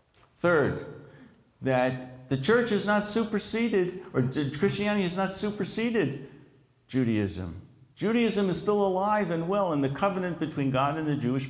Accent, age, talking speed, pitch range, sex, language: American, 60-79, 140 wpm, 120-160 Hz, male, English